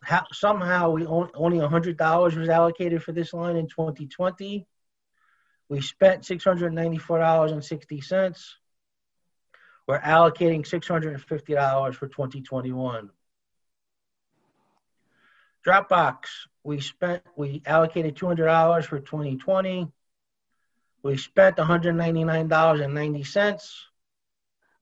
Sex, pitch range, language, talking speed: male, 145-175 Hz, English, 70 wpm